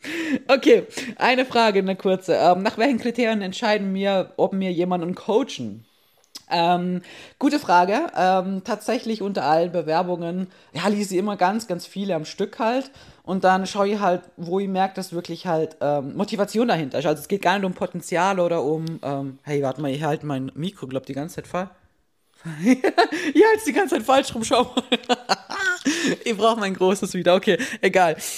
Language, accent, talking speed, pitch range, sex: German, German, 185 wpm, 165-215 Hz, female